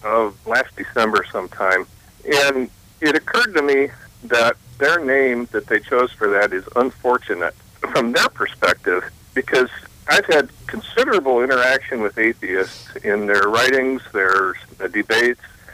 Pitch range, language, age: 110-135 Hz, English, 50-69